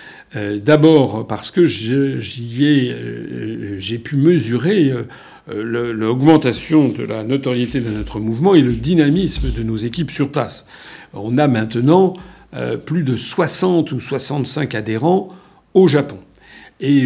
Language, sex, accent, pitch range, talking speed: French, male, French, 120-155 Hz, 140 wpm